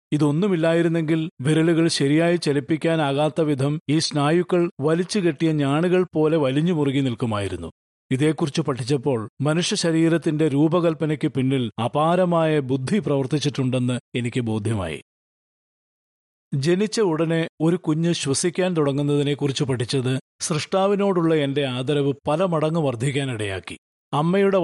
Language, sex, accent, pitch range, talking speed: Malayalam, male, native, 135-170 Hz, 95 wpm